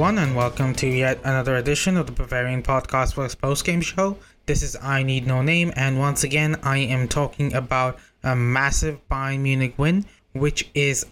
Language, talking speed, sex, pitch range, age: English, 180 wpm, male, 125-145 Hz, 20-39